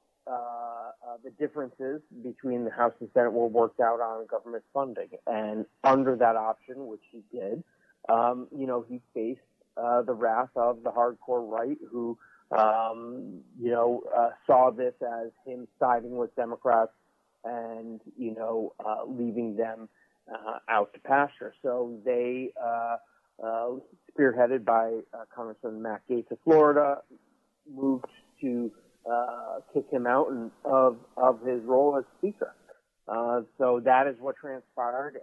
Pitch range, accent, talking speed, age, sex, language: 115-130 Hz, American, 145 wpm, 40-59, male, English